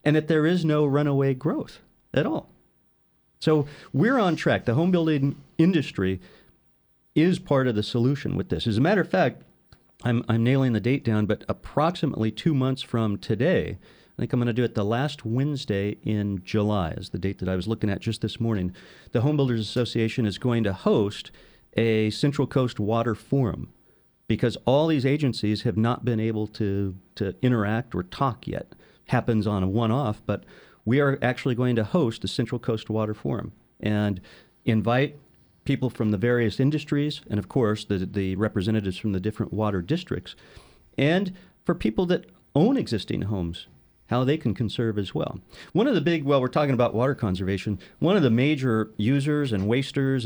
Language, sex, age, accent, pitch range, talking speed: English, male, 40-59, American, 105-135 Hz, 185 wpm